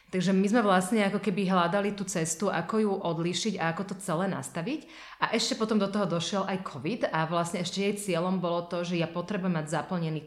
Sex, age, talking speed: female, 30-49, 215 wpm